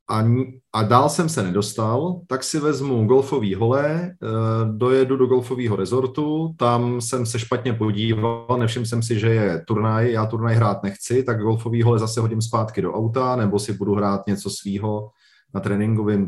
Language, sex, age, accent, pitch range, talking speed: Czech, male, 30-49, native, 110-135 Hz, 165 wpm